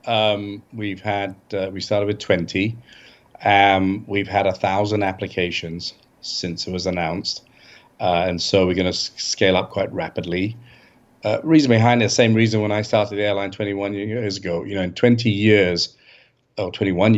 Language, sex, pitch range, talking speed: English, male, 90-110 Hz, 175 wpm